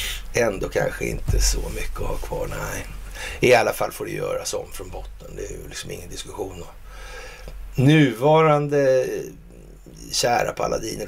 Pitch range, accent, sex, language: 85-135 Hz, native, male, Swedish